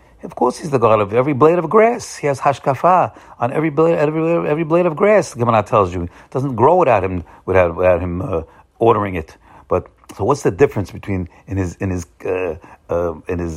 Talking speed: 210 wpm